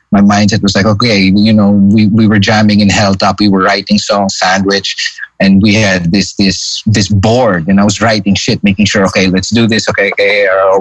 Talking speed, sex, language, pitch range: 215 wpm, male, English, 95-110 Hz